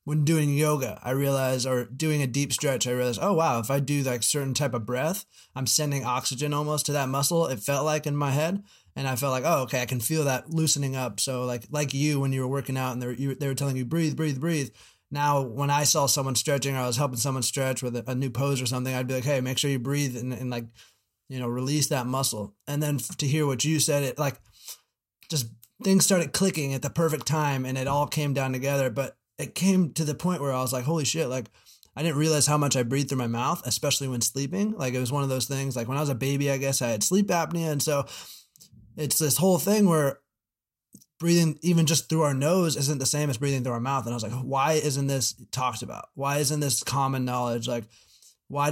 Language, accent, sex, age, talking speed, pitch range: English, American, male, 20-39, 250 wpm, 130-150 Hz